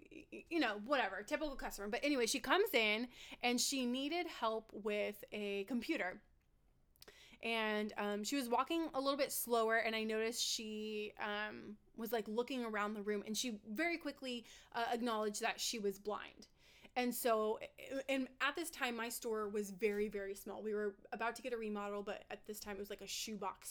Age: 20-39